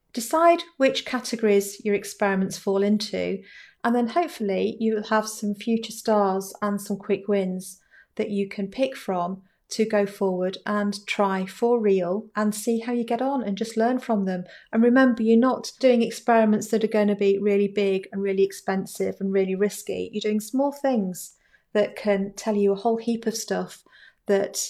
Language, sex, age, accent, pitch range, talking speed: English, female, 40-59, British, 190-220 Hz, 185 wpm